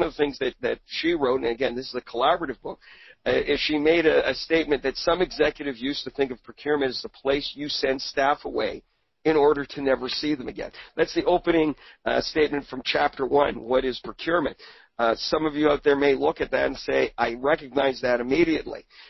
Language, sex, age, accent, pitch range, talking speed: English, male, 50-69, American, 130-155 Hz, 220 wpm